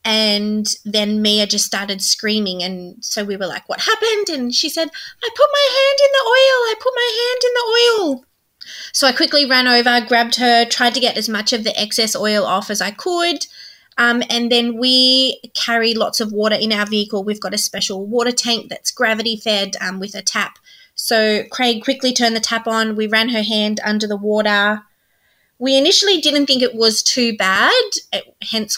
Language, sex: English, female